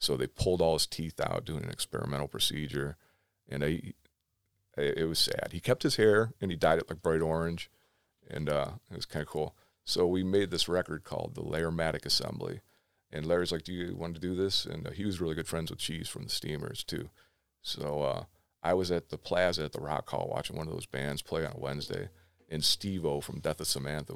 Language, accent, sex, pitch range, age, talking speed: English, American, male, 75-90 Hz, 40-59, 225 wpm